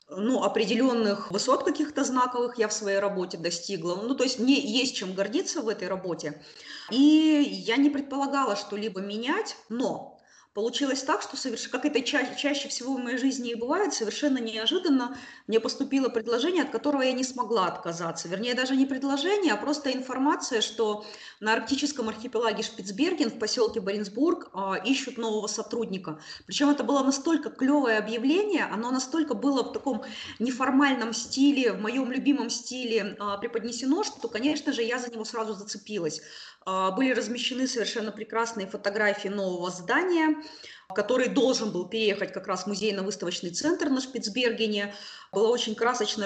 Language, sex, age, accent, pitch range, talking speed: Russian, female, 20-39, native, 210-270 Hz, 150 wpm